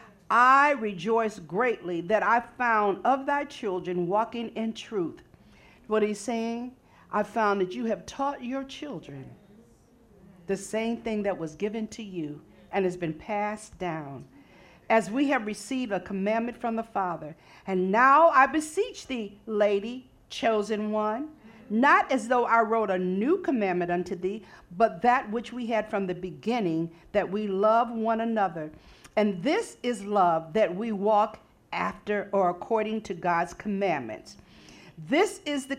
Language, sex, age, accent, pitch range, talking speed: English, female, 50-69, American, 195-250 Hz, 155 wpm